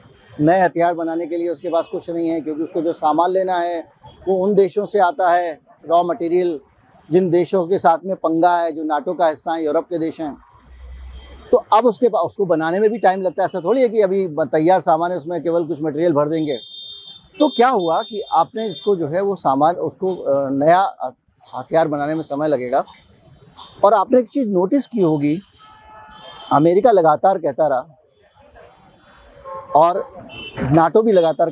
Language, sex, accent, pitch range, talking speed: Hindi, male, native, 155-190 Hz, 185 wpm